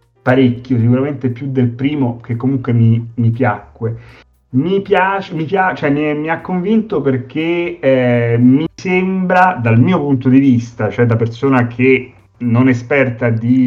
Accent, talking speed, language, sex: native, 150 wpm, Italian, male